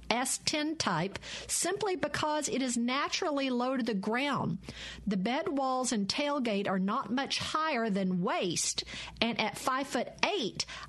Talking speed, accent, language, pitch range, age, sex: 150 wpm, American, English, 210-280 Hz, 50-69, female